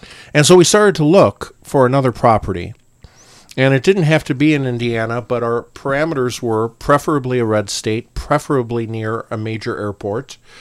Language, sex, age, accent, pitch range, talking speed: English, male, 50-69, American, 110-130 Hz, 170 wpm